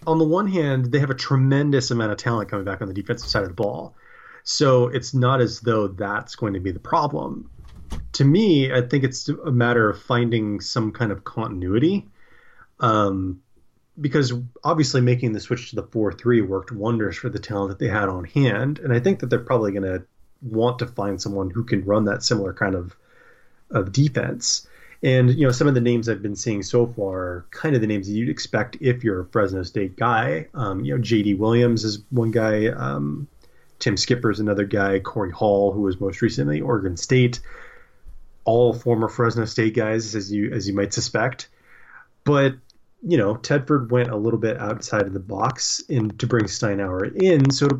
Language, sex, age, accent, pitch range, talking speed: English, male, 30-49, American, 100-125 Hz, 205 wpm